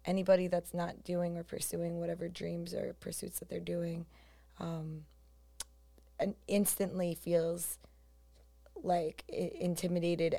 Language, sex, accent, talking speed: English, female, American, 110 wpm